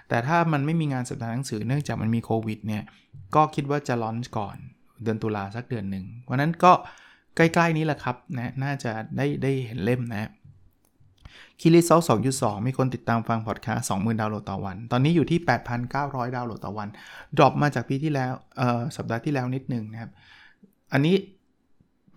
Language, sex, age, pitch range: Thai, male, 20-39, 110-135 Hz